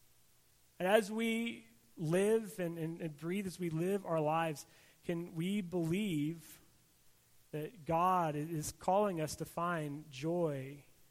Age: 30-49